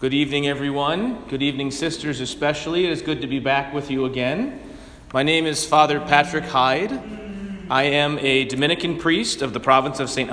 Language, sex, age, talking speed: English, male, 30-49, 185 wpm